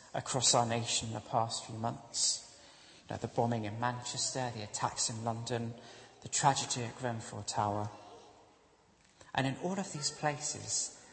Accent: British